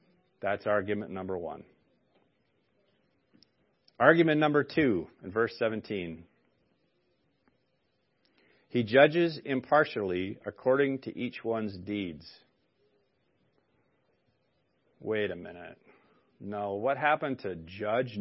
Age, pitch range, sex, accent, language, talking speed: 40-59, 105-135 Hz, male, American, English, 85 wpm